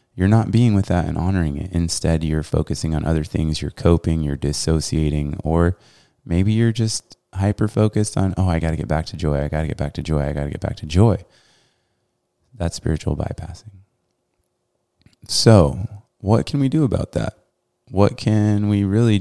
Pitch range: 80-105 Hz